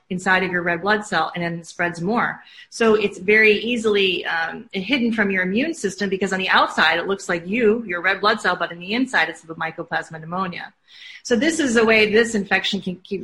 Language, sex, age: English, female, 30-49